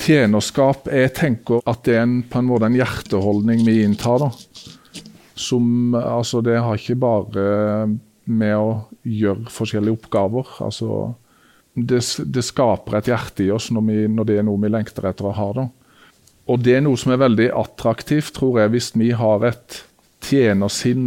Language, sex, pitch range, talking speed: Danish, male, 110-130 Hz, 155 wpm